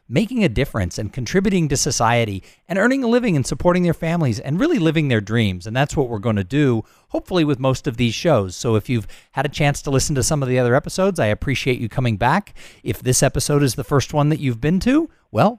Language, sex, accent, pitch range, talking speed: English, male, American, 110-165 Hz, 245 wpm